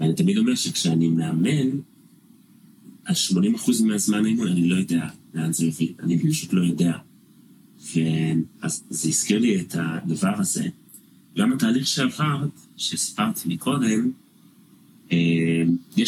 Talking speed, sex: 125 wpm, male